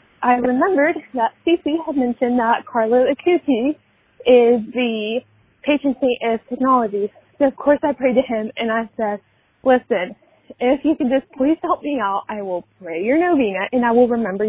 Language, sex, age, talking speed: English, female, 20-39, 180 wpm